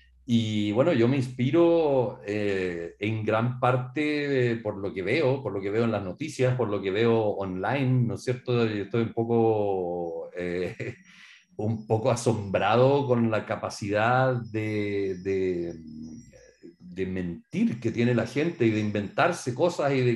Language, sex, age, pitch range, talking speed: Spanish, male, 50-69, 115-155 Hz, 160 wpm